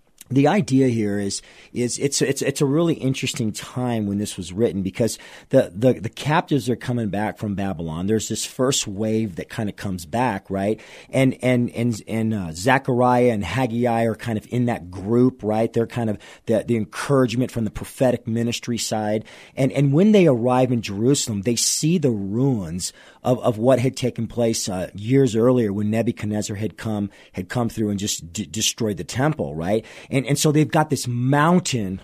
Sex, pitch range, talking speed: male, 105-130 Hz, 195 wpm